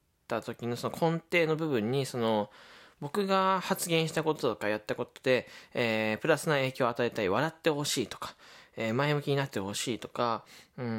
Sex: male